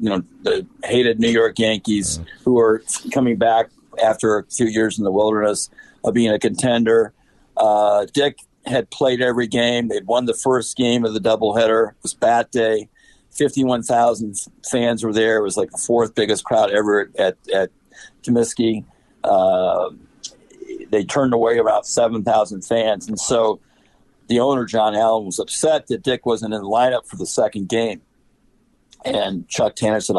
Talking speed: 165 wpm